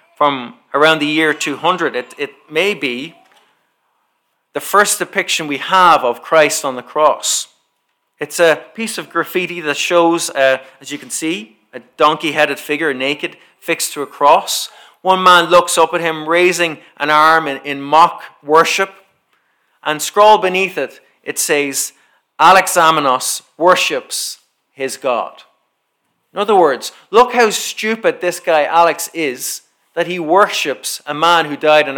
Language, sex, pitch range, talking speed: English, male, 145-180 Hz, 150 wpm